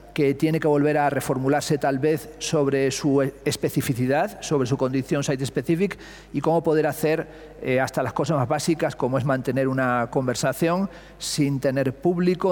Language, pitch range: Spanish, 130-150 Hz